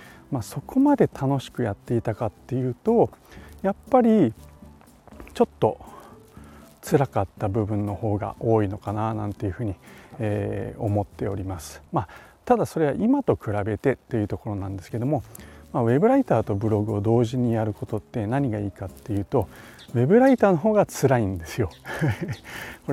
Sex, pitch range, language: male, 100-140 Hz, Japanese